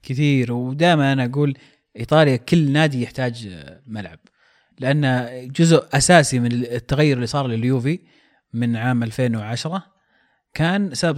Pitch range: 125-155 Hz